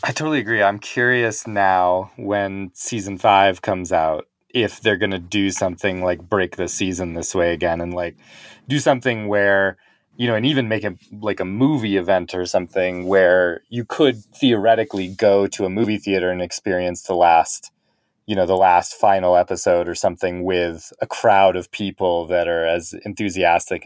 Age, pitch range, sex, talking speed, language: 30-49, 90-105 Hz, male, 180 wpm, English